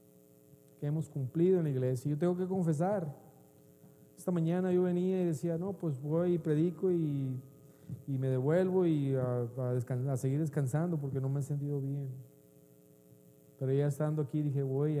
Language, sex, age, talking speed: Spanish, male, 40-59, 175 wpm